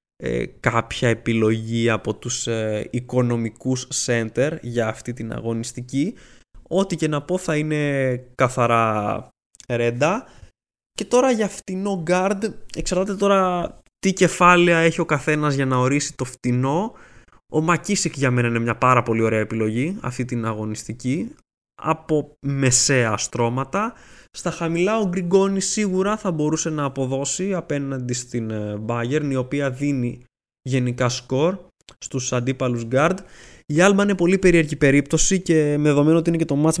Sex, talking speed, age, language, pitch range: male, 140 wpm, 20-39, Greek, 125-165 Hz